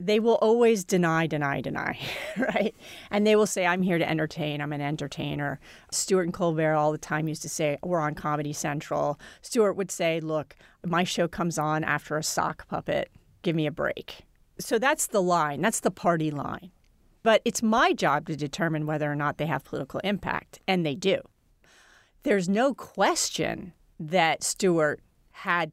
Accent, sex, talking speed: American, female, 180 wpm